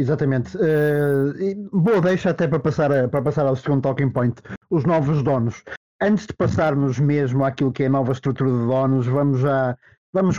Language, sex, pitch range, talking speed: Portuguese, male, 130-150 Hz, 190 wpm